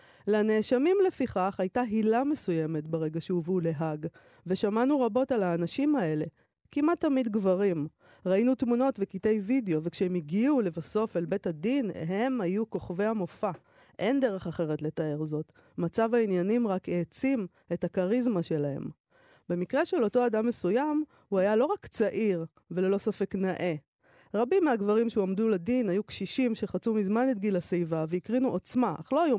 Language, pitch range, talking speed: Hebrew, 170-230 Hz, 145 wpm